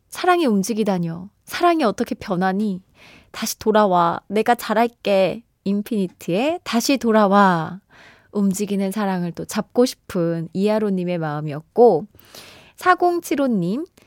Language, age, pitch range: Korean, 20-39, 190-295 Hz